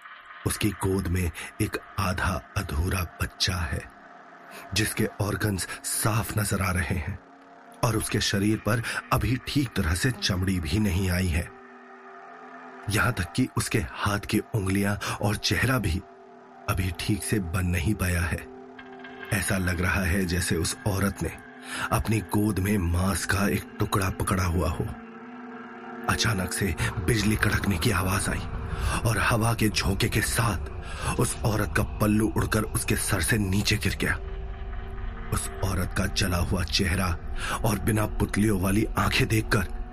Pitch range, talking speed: 90-110 Hz, 150 wpm